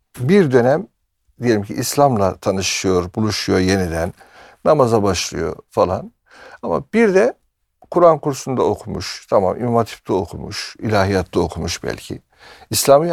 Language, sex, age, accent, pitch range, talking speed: Turkish, male, 60-79, native, 100-135 Hz, 110 wpm